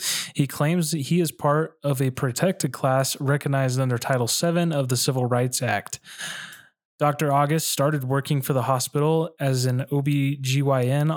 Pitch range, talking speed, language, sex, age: 130-150 Hz, 155 wpm, English, male, 20-39